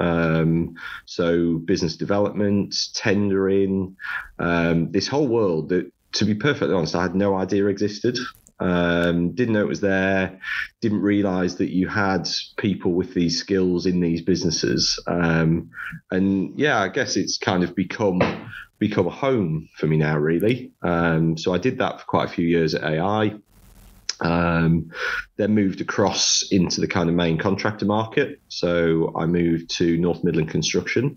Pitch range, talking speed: 85-100 Hz, 160 wpm